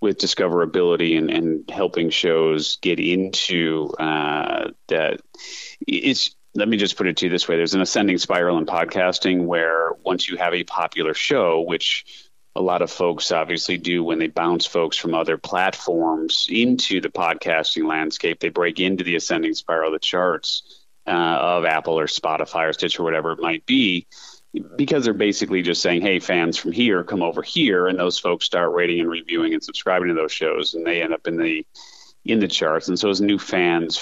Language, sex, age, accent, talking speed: English, male, 30-49, American, 190 wpm